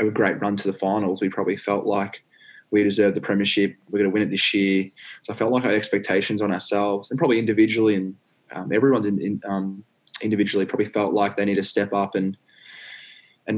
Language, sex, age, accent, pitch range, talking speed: English, male, 20-39, Australian, 100-105 Hz, 210 wpm